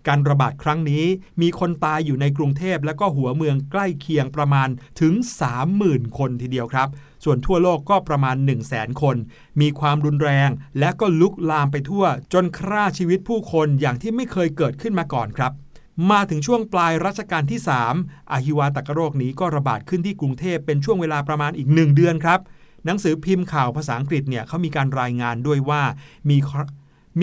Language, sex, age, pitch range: Thai, male, 60-79, 135-170 Hz